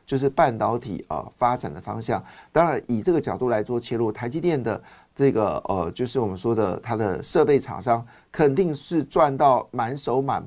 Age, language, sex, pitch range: 50-69, Chinese, male, 110-140 Hz